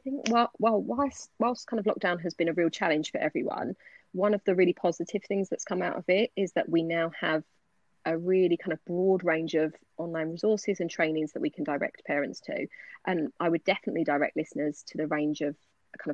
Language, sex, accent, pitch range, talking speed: English, female, British, 160-195 Hz, 225 wpm